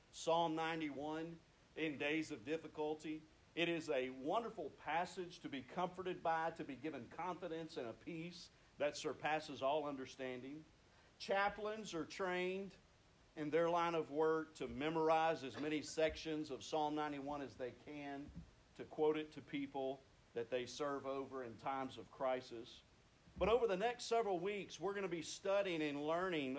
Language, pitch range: English, 145-195 Hz